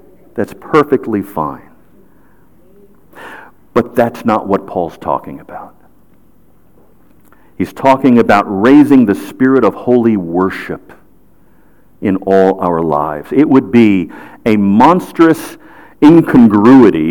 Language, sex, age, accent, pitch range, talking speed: English, male, 50-69, American, 100-135 Hz, 100 wpm